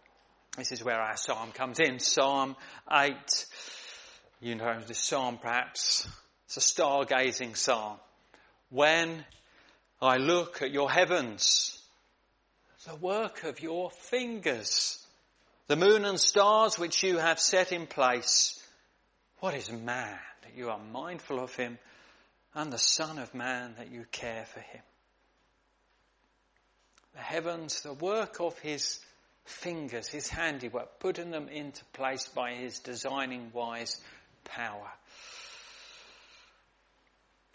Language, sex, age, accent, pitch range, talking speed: English, male, 40-59, British, 120-165 Hz, 125 wpm